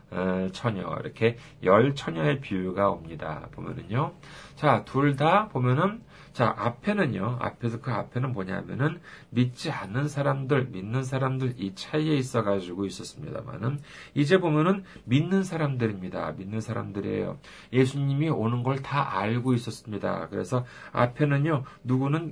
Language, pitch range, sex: Korean, 110-150 Hz, male